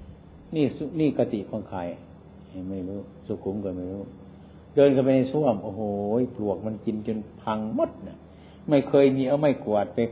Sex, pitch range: male, 100-135 Hz